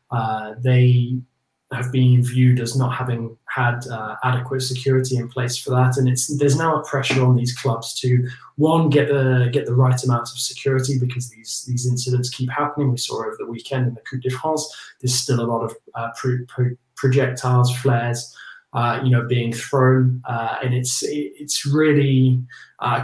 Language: English